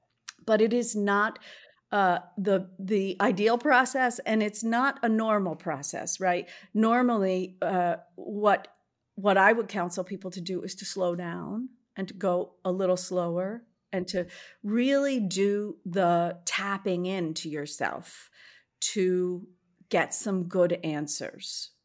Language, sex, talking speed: English, female, 135 wpm